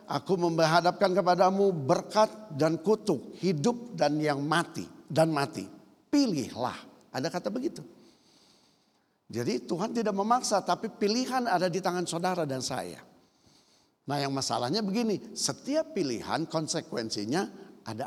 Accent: native